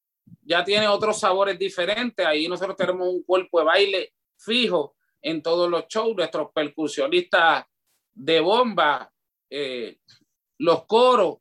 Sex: male